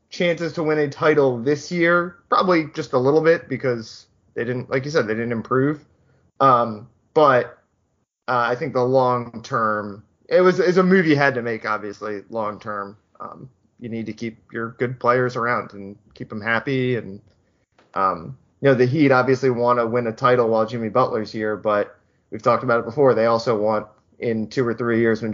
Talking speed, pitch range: 200 wpm, 110-135 Hz